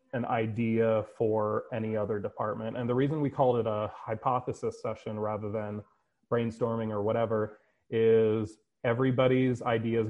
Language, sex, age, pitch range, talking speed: English, male, 30-49, 110-125 Hz, 135 wpm